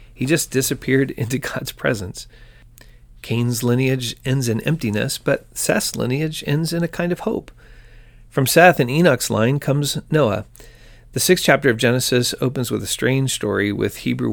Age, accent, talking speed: 40-59, American, 165 wpm